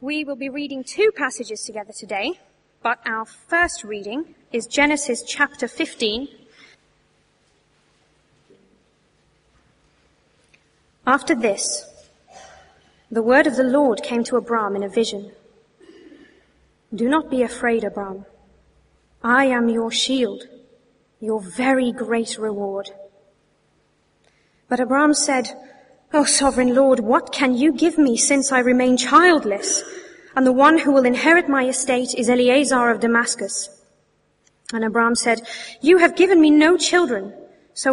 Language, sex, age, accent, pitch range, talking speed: English, female, 30-49, British, 220-285 Hz, 125 wpm